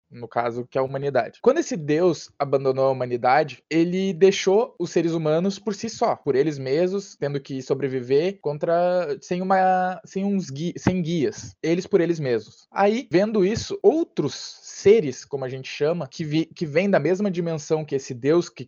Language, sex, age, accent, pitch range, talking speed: Portuguese, male, 20-39, Brazilian, 140-195 Hz, 185 wpm